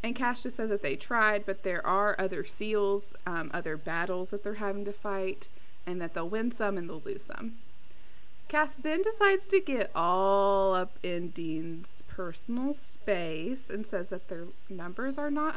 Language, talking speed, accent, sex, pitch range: English, 180 wpm, American, female, 180-230 Hz